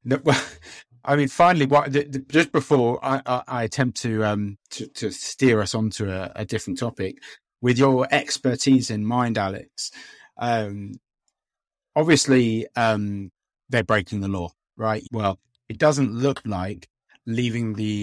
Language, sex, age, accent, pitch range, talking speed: English, male, 30-49, British, 110-130 Hz, 155 wpm